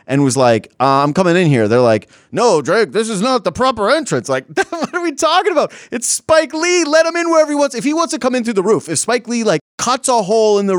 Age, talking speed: 30-49, 285 wpm